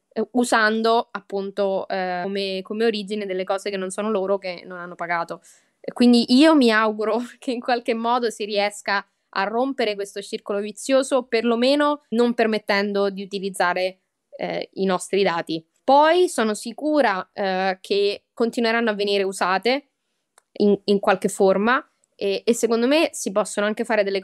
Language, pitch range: Italian, 190-230 Hz